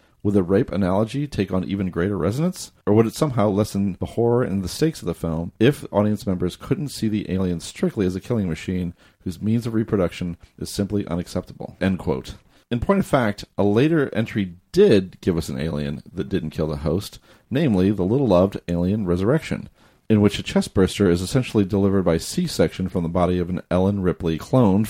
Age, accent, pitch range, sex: 40-59, American, 90-110 Hz, male